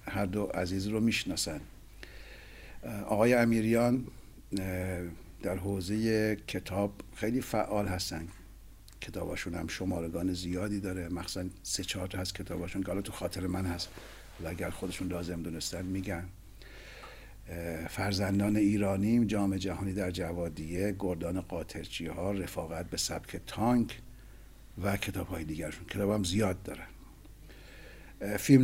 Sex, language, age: male, Persian, 60-79